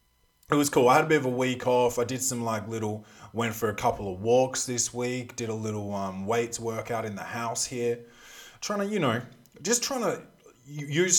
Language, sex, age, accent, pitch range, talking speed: English, male, 20-39, Australian, 100-130 Hz, 225 wpm